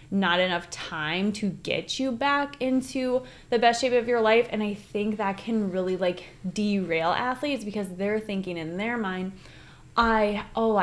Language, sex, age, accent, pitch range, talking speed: English, female, 20-39, American, 180-220 Hz, 170 wpm